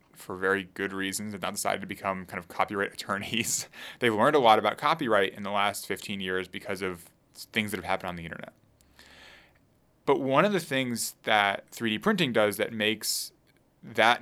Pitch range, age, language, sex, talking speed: 95-115 Hz, 20-39, English, male, 190 wpm